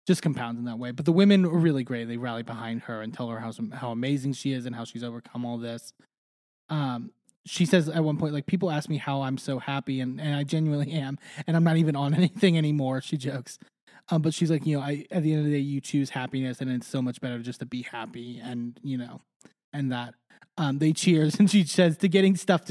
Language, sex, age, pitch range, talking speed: English, male, 20-39, 130-180 Hz, 255 wpm